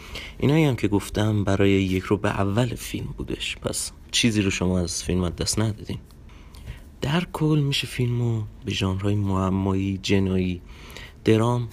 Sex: male